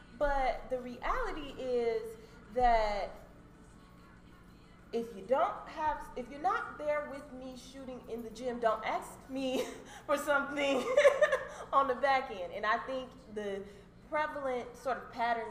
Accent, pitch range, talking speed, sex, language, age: American, 180-245 Hz, 140 wpm, female, English, 20-39